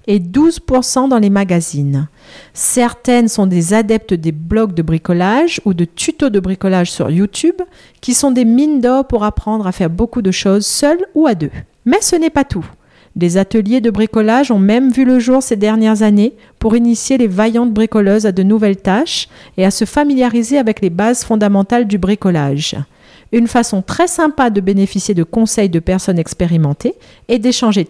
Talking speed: 185 wpm